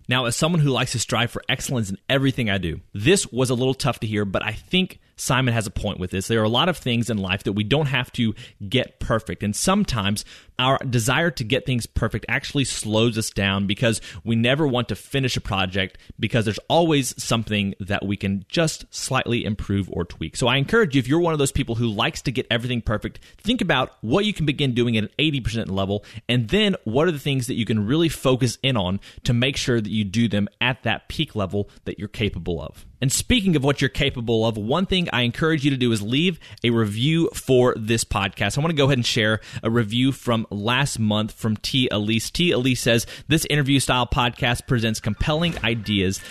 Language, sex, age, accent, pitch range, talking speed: English, male, 30-49, American, 105-135 Hz, 230 wpm